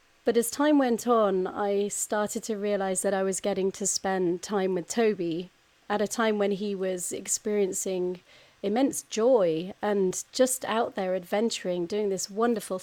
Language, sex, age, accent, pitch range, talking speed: English, female, 30-49, British, 185-220 Hz, 165 wpm